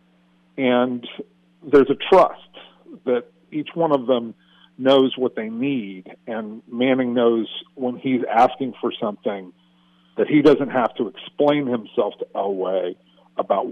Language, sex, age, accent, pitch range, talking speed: English, male, 50-69, American, 95-140 Hz, 135 wpm